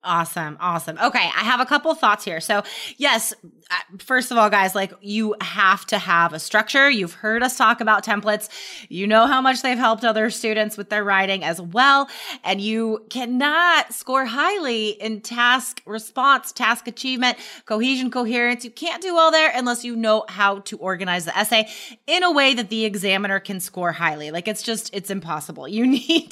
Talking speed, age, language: 190 wpm, 20-39, English